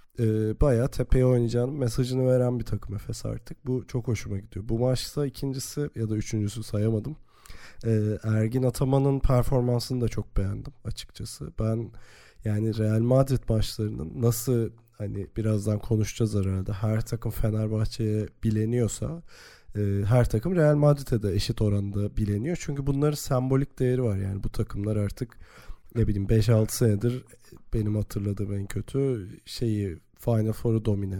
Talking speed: 140 wpm